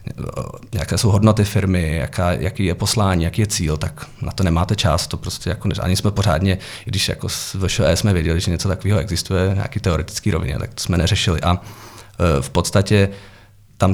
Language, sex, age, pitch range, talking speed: Czech, male, 40-59, 95-105 Hz, 190 wpm